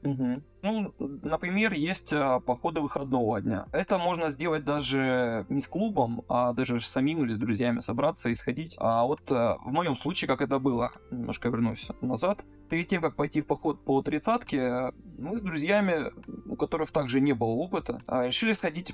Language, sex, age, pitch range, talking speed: Russian, male, 20-39, 125-160 Hz, 165 wpm